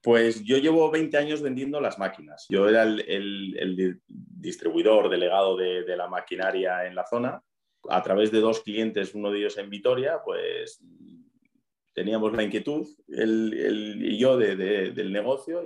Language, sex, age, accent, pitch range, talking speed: Spanish, male, 30-49, Spanish, 95-130 Hz, 170 wpm